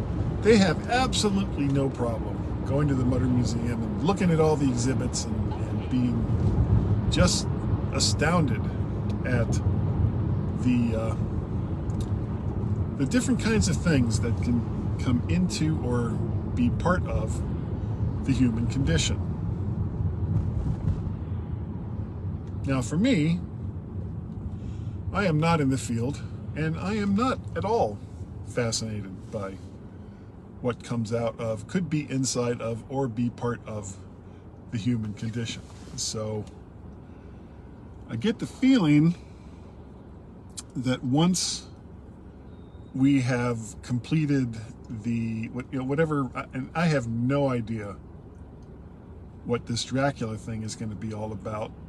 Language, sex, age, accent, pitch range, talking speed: English, male, 40-59, American, 100-125 Hz, 115 wpm